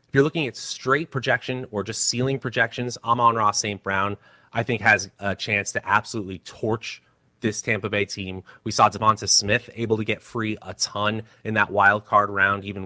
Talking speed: 195 wpm